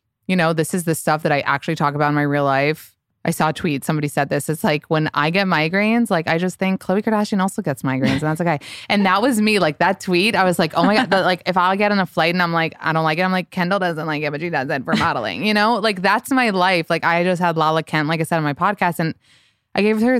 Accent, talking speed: American, 295 wpm